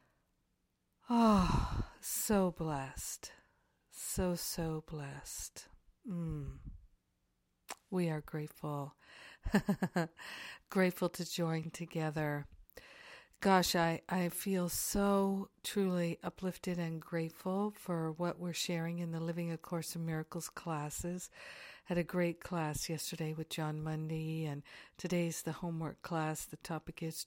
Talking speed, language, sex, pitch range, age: 110 wpm, English, female, 160-180 Hz, 50-69